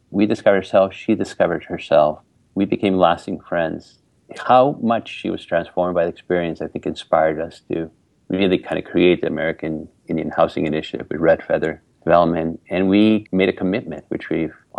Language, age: English, 50-69